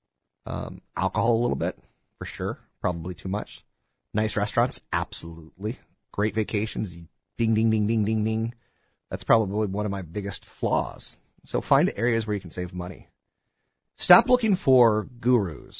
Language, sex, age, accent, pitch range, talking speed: English, male, 40-59, American, 90-115 Hz, 150 wpm